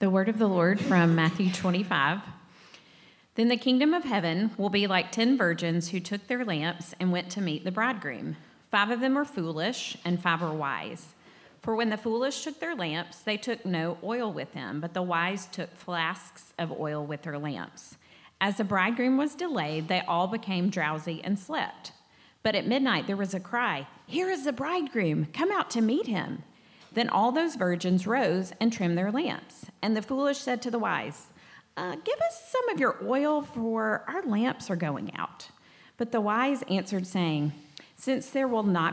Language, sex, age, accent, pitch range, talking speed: English, female, 40-59, American, 175-240 Hz, 195 wpm